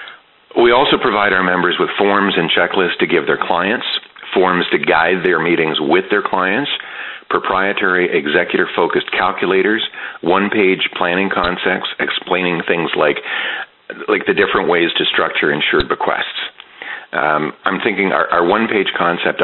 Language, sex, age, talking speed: English, male, 50-69, 150 wpm